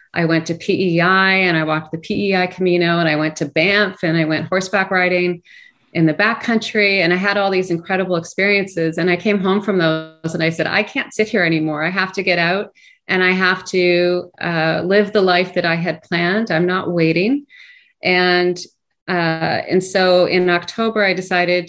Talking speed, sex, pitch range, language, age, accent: 200 wpm, female, 170-195 Hz, English, 30-49, American